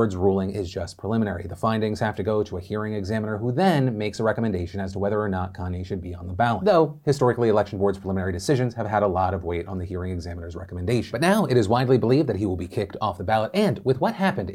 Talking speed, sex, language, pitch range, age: 270 wpm, male, English, 105-140 Hz, 30-49